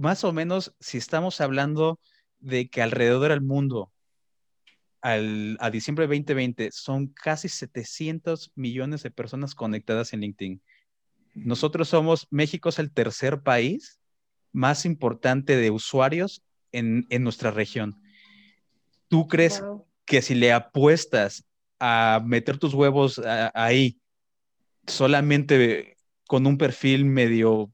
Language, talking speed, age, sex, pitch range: Spanish, 120 wpm, 30-49, male, 115-145 Hz